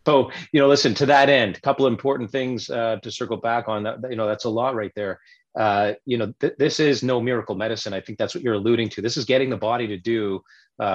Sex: male